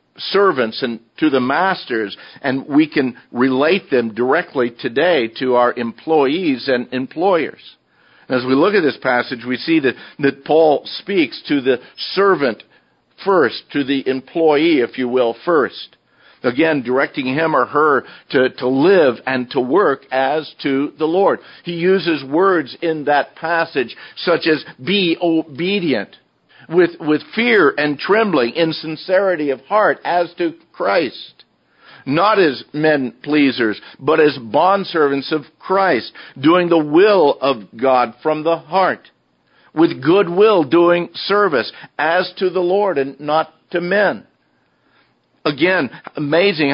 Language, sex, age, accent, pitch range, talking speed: English, male, 50-69, American, 130-170 Hz, 135 wpm